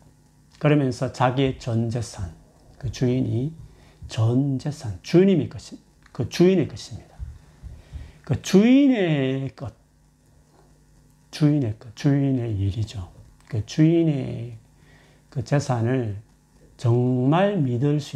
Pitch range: 110-145 Hz